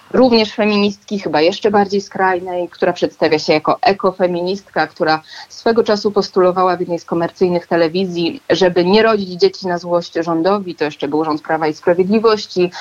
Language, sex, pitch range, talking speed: Polish, female, 170-205 Hz, 160 wpm